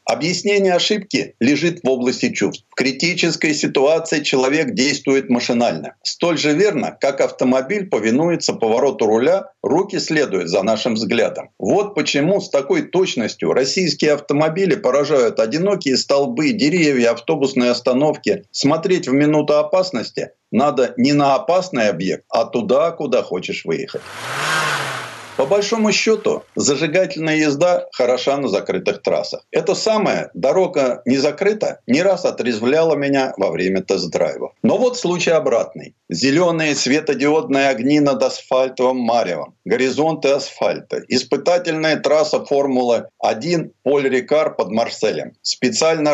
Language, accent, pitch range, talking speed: Russian, native, 130-185 Hz, 120 wpm